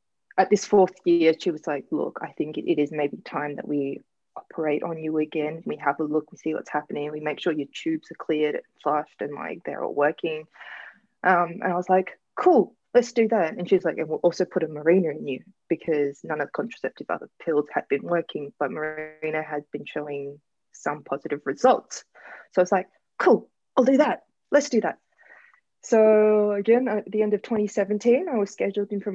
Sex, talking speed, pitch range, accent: female, 210 wpm, 155-215 Hz, Australian